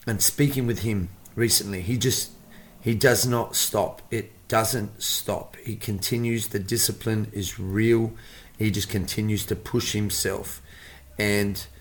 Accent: Australian